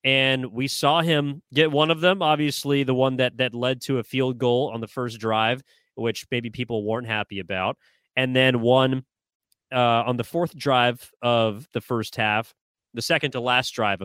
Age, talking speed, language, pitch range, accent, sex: 30-49, 190 wpm, English, 115-130 Hz, American, male